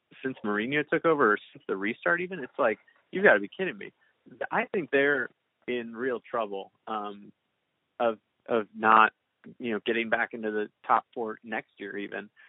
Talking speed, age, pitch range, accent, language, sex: 185 wpm, 30-49, 110-135 Hz, American, English, male